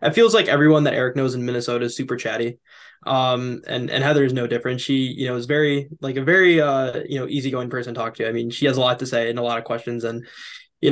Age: 10-29